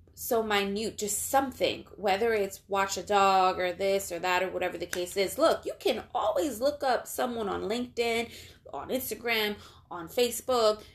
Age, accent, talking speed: 20-39, American, 170 wpm